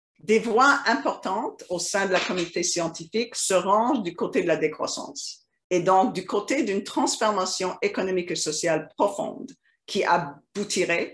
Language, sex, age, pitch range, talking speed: French, female, 50-69, 175-235 Hz, 150 wpm